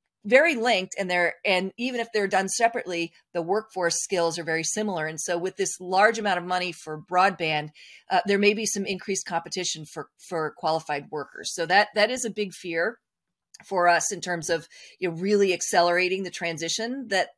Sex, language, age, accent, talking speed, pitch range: female, English, 40-59, American, 195 wpm, 170-205 Hz